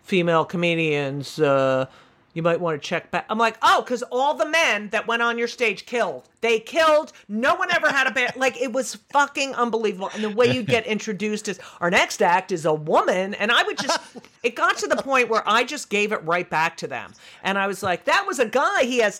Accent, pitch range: American, 180-245 Hz